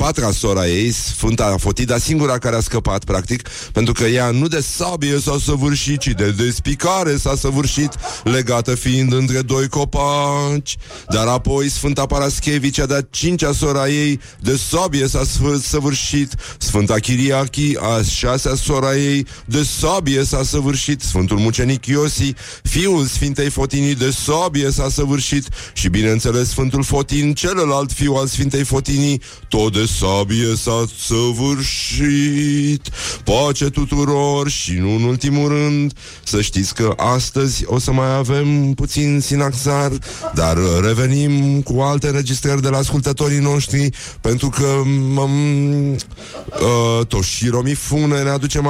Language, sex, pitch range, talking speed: Romanian, male, 115-145 Hz, 135 wpm